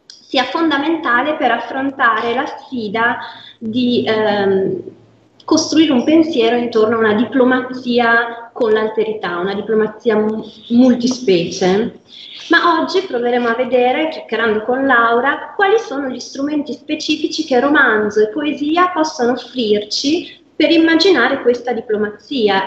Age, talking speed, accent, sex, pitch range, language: 30-49, 115 wpm, native, female, 220-300 Hz, Italian